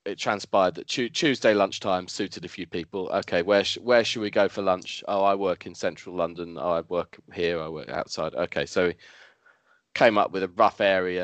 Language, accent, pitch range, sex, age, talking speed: English, British, 95-130 Hz, male, 20-39, 220 wpm